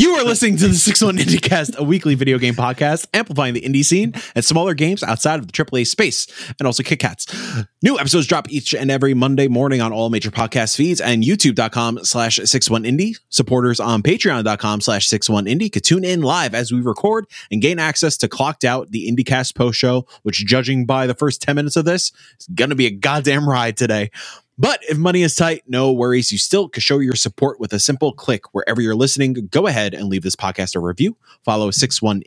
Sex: male